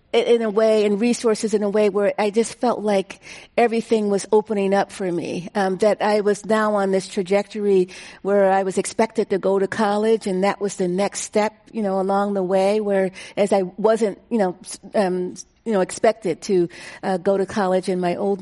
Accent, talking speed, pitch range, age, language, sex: American, 210 wpm, 190-220 Hz, 50-69, English, female